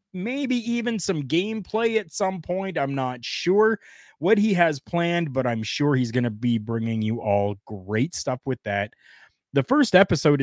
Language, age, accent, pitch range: English, 20-39, American, 110-155 Hz